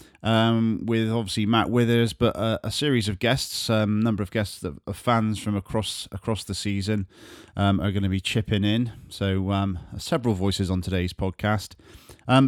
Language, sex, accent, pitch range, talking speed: English, male, British, 100-120 Hz, 190 wpm